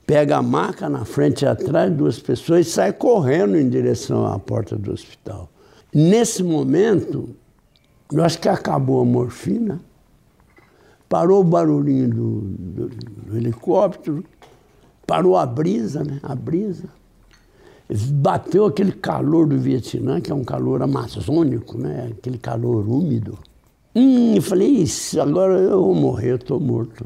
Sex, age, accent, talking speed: male, 60-79, Brazilian, 140 wpm